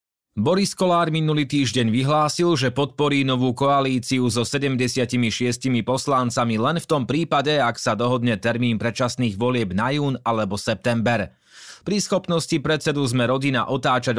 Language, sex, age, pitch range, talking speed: Slovak, male, 30-49, 115-140 Hz, 135 wpm